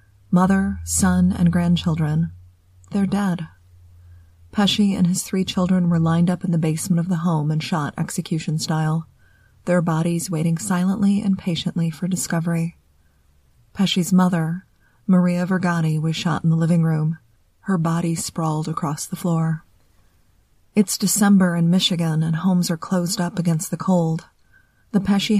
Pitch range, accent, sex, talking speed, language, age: 160-185 Hz, American, female, 145 wpm, English, 30-49